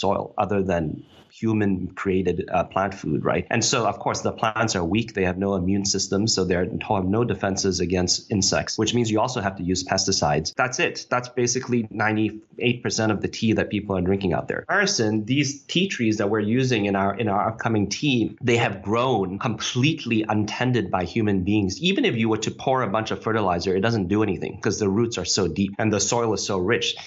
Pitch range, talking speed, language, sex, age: 95-115 Hz, 215 wpm, English, male, 30-49